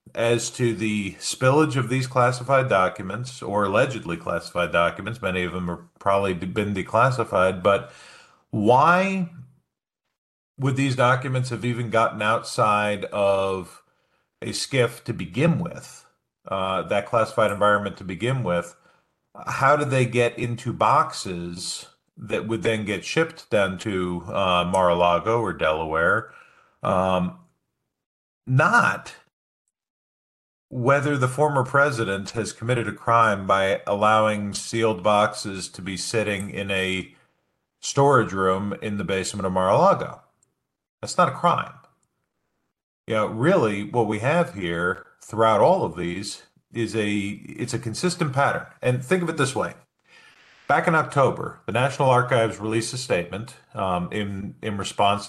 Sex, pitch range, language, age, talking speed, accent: male, 95-120 Hz, English, 40-59, 135 wpm, American